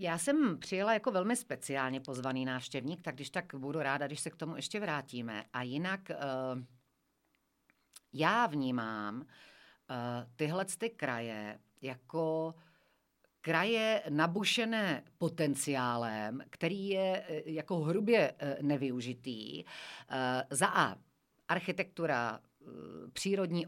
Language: Czech